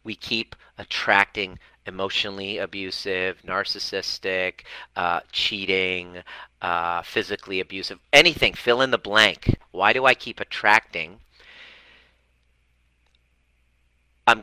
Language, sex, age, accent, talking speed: English, male, 40-59, American, 90 wpm